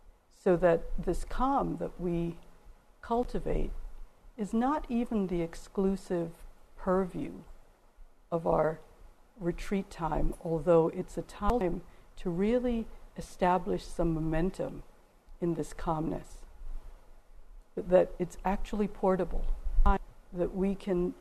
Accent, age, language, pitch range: American, 60-79, English, 165-195 Hz